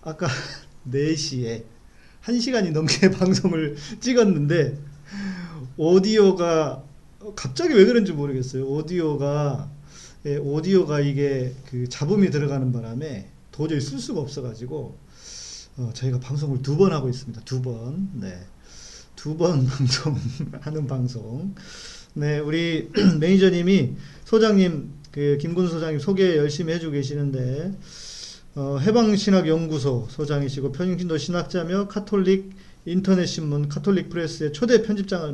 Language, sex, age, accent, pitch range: Korean, male, 40-59, native, 140-185 Hz